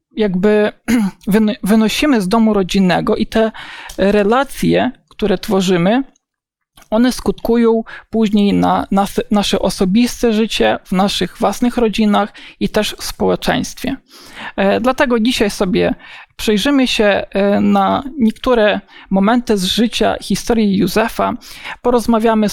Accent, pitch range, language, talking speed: native, 200-235 Hz, Polish, 100 wpm